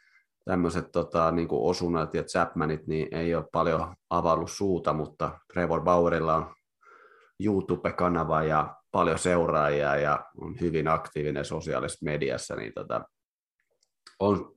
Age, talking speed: 30-49, 120 wpm